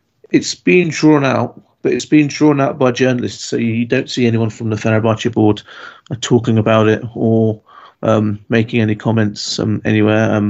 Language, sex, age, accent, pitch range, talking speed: English, male, 30-49, British, 110-120 Hz, 170 wpm